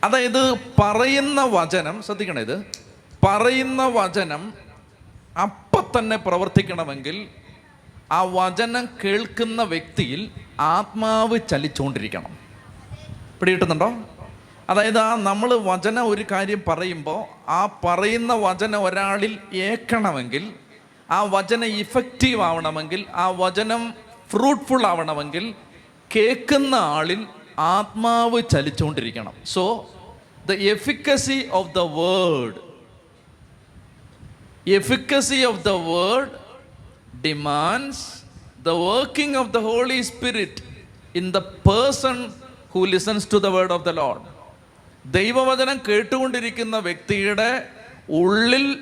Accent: native